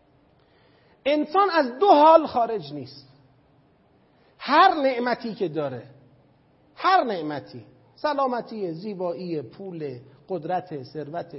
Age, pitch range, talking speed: 40-59, 155-230 Hz, 90 wpm